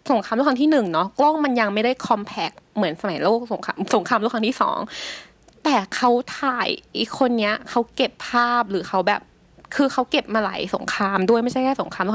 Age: 20-39